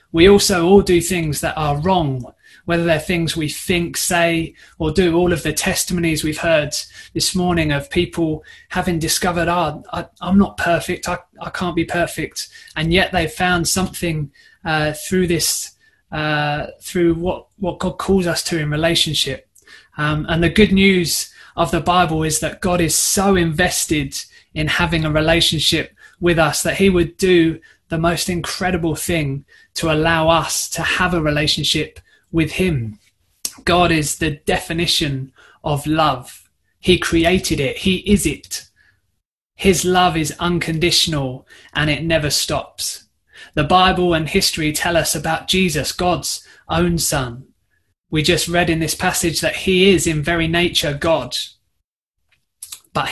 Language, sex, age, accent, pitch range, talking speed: English, male, 20-39, British, 155-180 Hz, 155 wpm